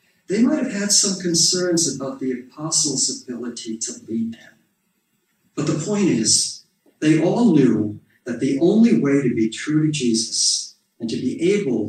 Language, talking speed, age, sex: English, 165 wpm, 50-69, male